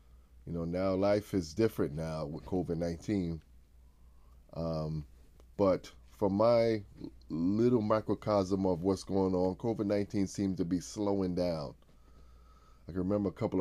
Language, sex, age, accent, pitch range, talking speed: English, male, 20-39, American, 70-100 Hz, 130 wpm